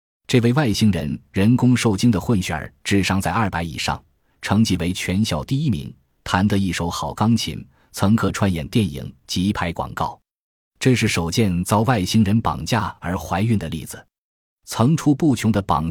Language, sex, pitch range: Chinese, male, 90-120 Hz